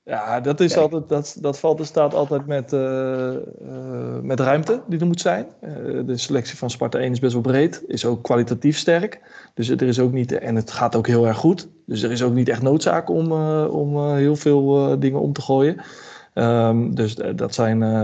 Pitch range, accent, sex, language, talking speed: 115-140 Hz, Dutch, male, English, 230 wpm